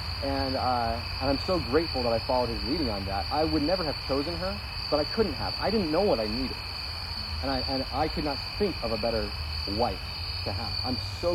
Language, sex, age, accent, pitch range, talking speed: English, male, 40-59, American, 85-120 Hz, 235 wpm